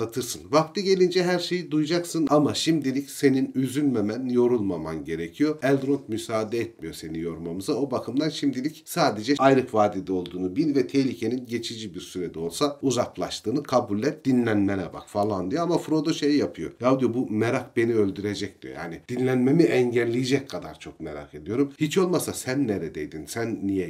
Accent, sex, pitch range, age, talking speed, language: native, male, 95-135 Hz, 40-59, 155 wpm, Turkish